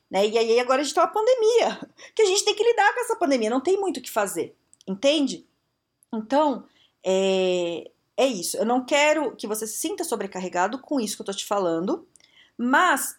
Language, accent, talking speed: Portuguese, Brazilian, 210 wpm